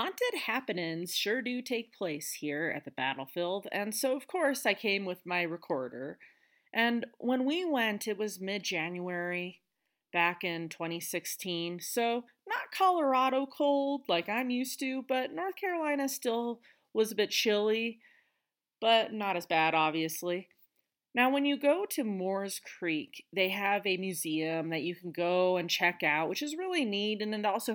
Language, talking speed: English, 160 wpm